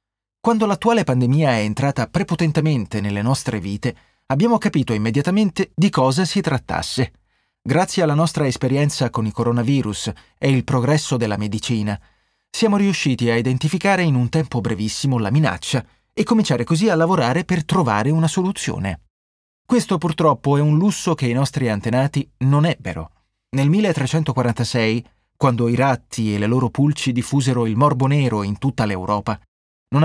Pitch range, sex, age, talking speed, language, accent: 115-160 Hz, male, 30-49, 150 wpm, Italian, native